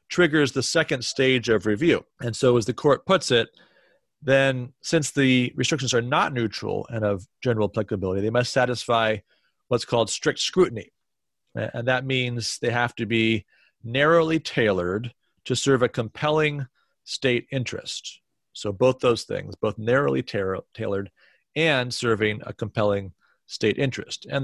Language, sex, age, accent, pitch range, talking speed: English, male, 40-59, American, 105-130 Hz, 145 wpm